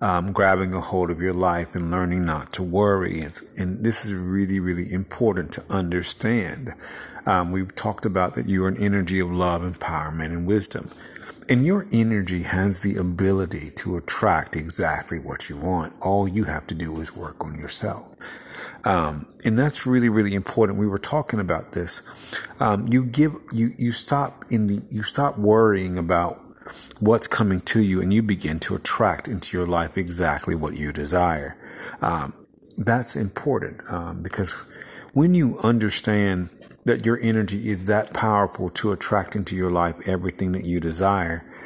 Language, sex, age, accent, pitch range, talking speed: English, male, 50-69, American, 90-105 Hz, 170 wpm